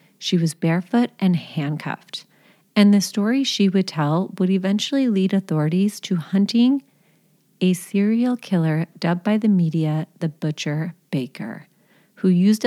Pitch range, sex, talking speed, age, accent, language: 165-200 Hz, female, 135 wpm, 30-49, American, English